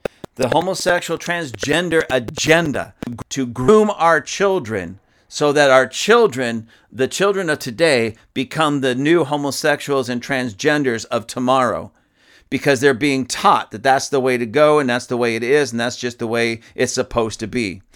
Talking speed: 165 wpm